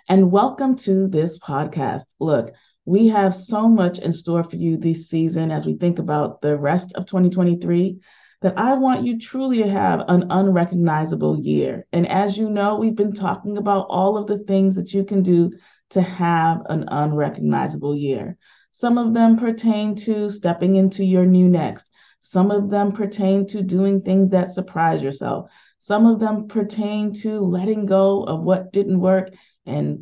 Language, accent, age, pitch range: English, American, 30-49, 170-205 Hz